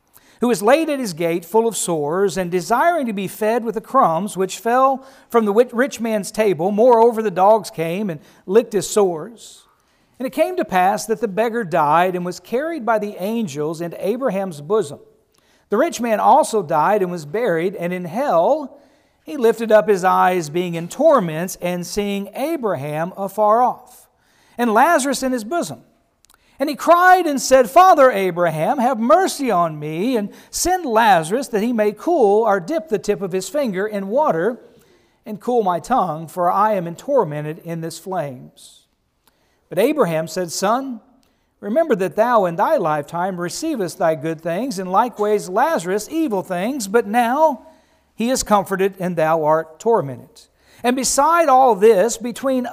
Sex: male